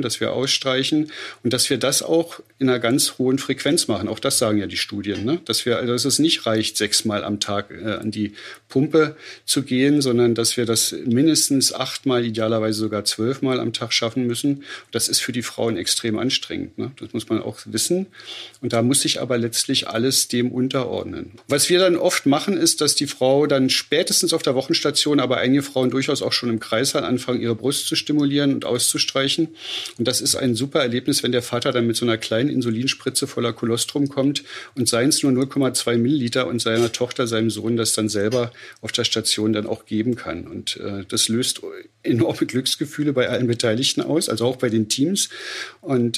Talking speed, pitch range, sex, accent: 200 wpm, 115-140 Hz, male, German